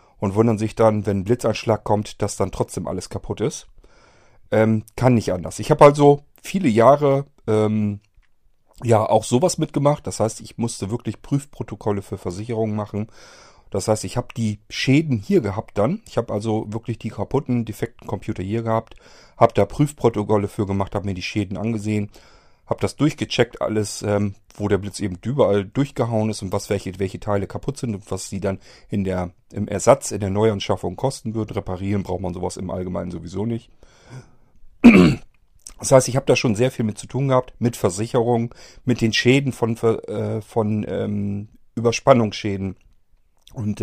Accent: German